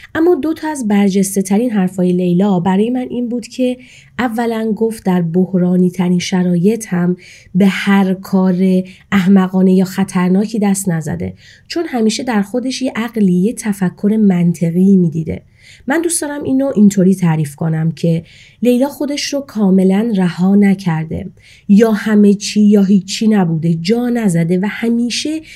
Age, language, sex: 30-49, Persian, female